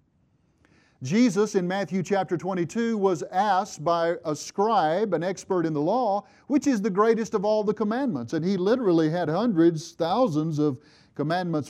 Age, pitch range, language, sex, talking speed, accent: 50-69, 170-230 Hz, English, male, 160 wpm, American